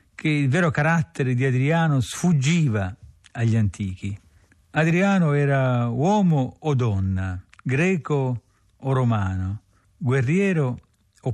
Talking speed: 100 wpm